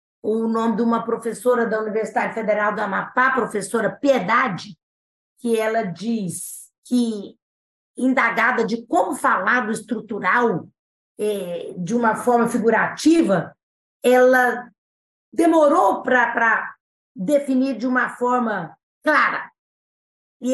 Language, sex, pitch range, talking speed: Portuguese, female, 215-270 Hz, 100 wpm